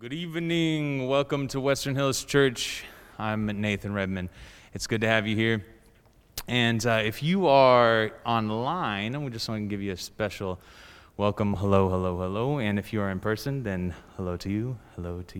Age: 20-39